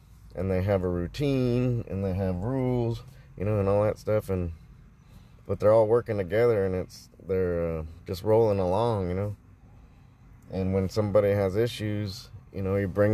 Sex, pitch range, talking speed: male, 95-115 Hz, 180 wpm